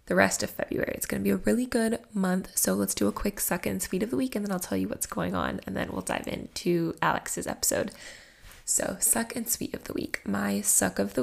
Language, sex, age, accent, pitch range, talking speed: English, female, 10-29, American, 170-230 Hz, 260 wpm